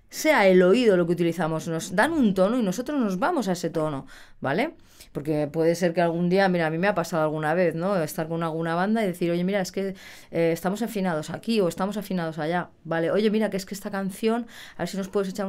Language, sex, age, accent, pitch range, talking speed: Spanish, female, 20-39, Spanish, 165-210 Hz, 250 wpm